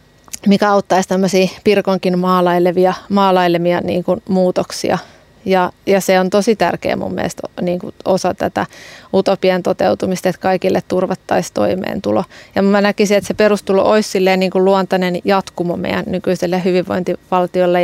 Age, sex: 30-49, female